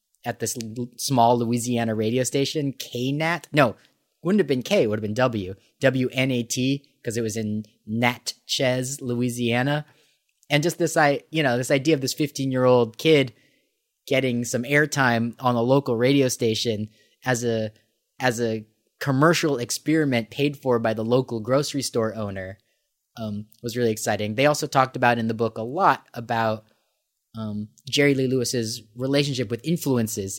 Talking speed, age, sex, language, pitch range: 160 wpm, 30-49, male, English, 115-140 Hz